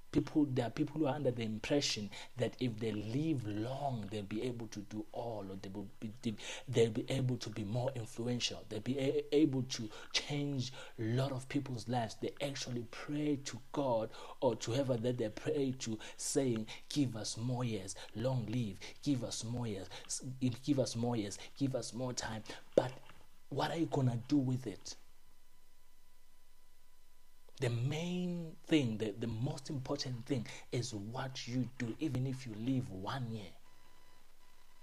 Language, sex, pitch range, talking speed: English, male, 115-145 Hz, 170 wpm